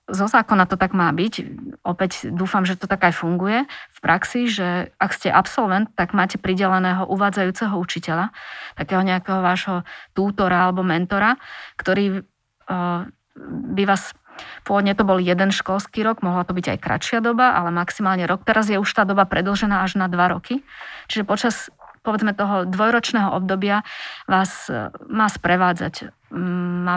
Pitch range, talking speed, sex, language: 180-200 Hz, 150 wpm, female, Slovak